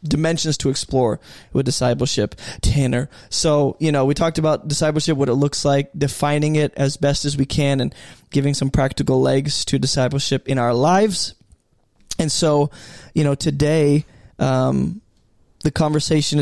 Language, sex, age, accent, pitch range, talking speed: English, male, 20-39, American, 135-155 Hz, 155 wpm